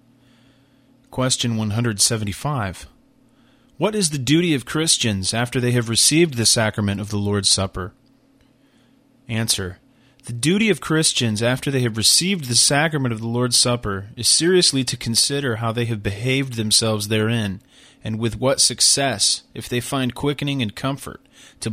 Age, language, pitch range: 30-49, English, 110-135 Hz